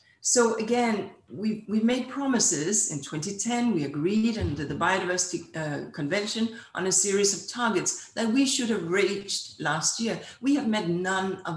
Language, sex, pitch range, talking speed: English, female, 165-205 Hz, 160 wpm